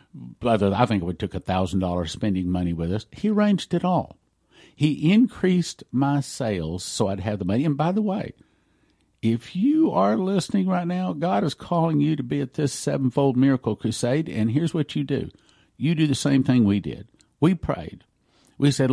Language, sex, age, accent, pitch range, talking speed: English, male, 50-69, American, 95-145 Hz, 195 wpm